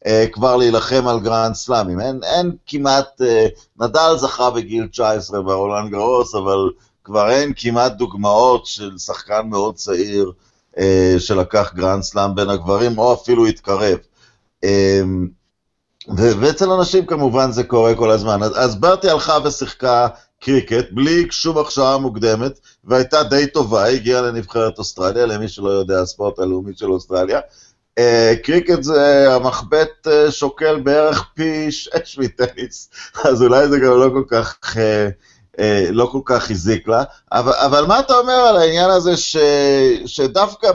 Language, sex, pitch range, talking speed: Hebrew, male, 110-145 Hz, 140 wpm